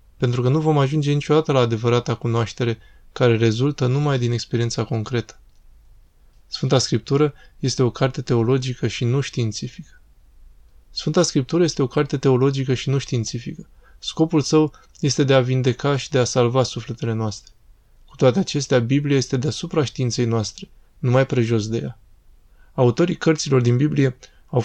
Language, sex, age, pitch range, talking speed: Romanian, male, 20-39, 120-140 Hz, 150 wpm